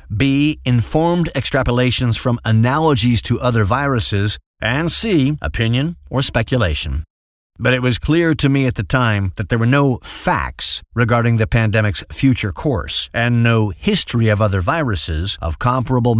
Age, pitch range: 50-69, 105-140 Hz